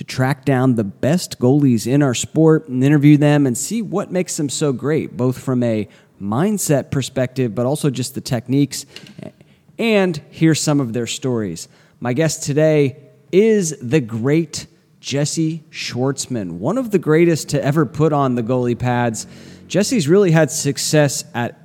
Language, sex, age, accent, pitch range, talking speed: English, male, 30-49, American, 120-155 Hz, 165 wpm